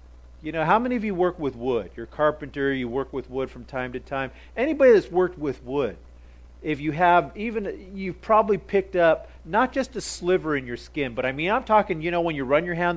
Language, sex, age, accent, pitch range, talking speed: English, male, 40-59, American, 120-170 Hz, 240 wpm